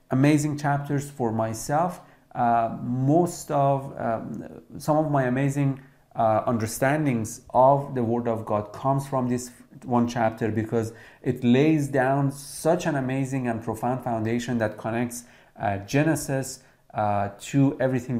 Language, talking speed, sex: English, 135 wpm, male